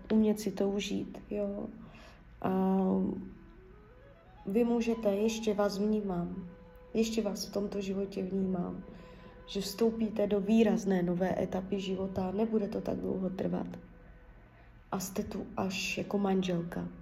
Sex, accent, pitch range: female, native, 195-225 Hz